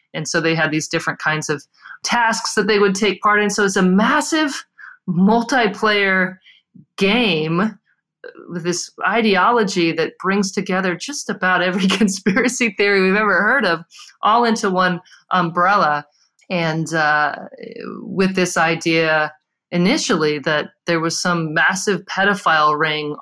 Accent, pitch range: American, 160-205 Hz